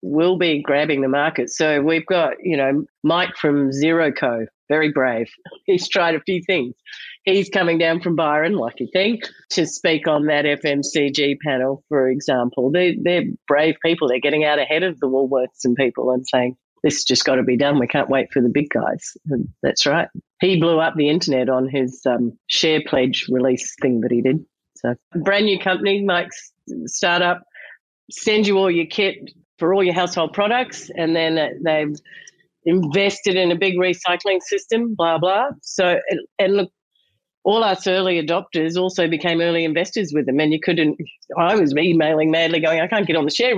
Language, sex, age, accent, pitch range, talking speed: English, female, 40-59, Australian, 145-180 Hz, 190 wpm